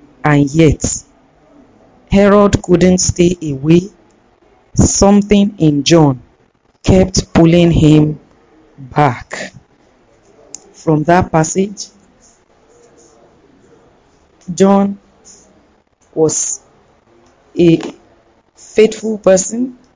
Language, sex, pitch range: English, female, 150-190 Hz